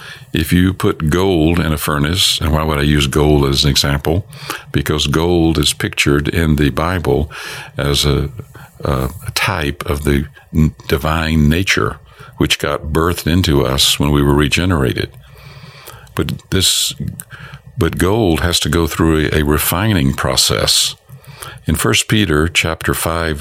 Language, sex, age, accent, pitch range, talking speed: English, male, 60-79, American, 75-115 Hz, 145 wpm